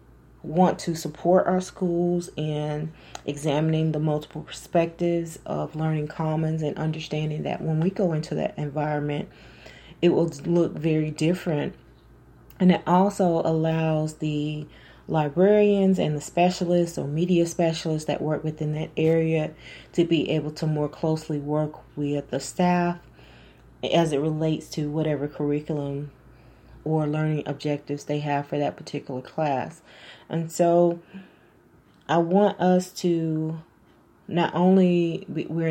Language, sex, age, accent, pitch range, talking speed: English, female, 30-49, American, 150-170 Hz, 130 wpm